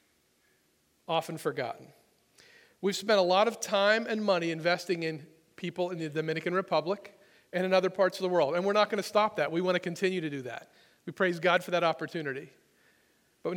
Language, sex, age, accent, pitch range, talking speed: English, male, 40-59, American, 165-195 Hz, 200 wpm